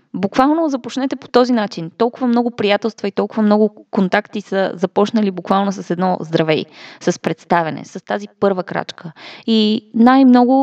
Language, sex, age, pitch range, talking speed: Bulgarian, female, 20-39, 185-225 Hz, 145 wpm